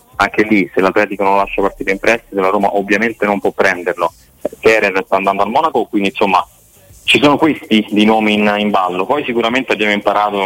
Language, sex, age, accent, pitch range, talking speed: Italian, male, 30-49, native, 95-105 Hz, 195 wpm